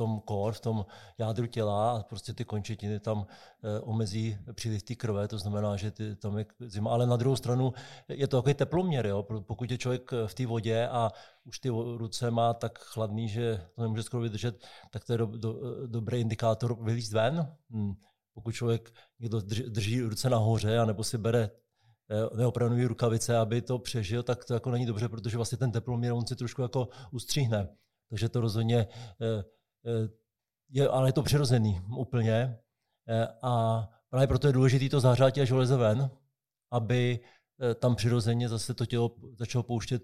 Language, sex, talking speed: Czech, male, 180 wpm